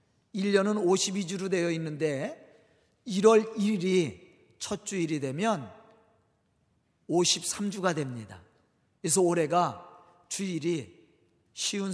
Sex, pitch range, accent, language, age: male, 155-215 Hz, native, Korean, 40-59